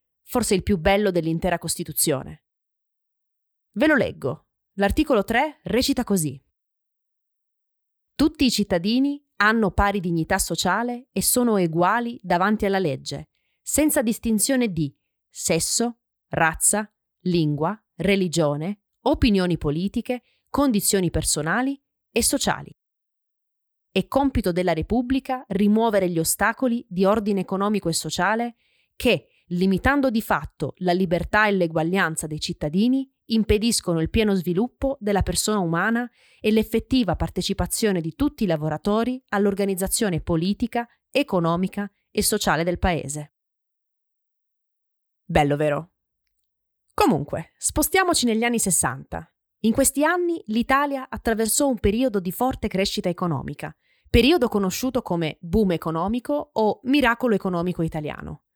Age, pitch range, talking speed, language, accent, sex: 30-49, 175-240 Hz, 110 wpm, Italian, native, female